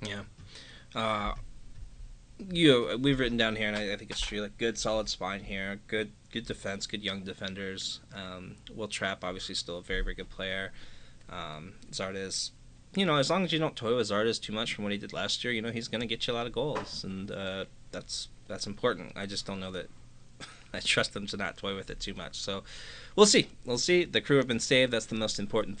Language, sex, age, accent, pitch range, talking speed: English, male, 20-39, American, 100-125 Hz, 235 wpm